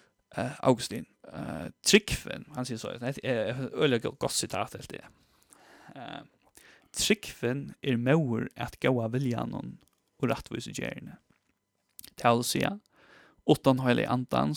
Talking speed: 75 wpm